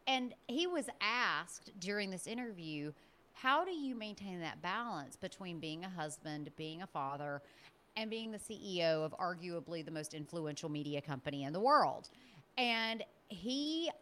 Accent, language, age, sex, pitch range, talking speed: American, English, 30-49, female, 165-230 Hz, 155 wpm